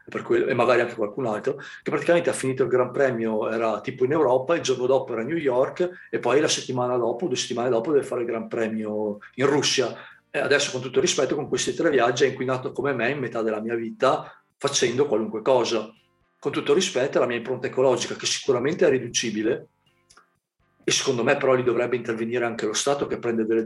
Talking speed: 220 wpm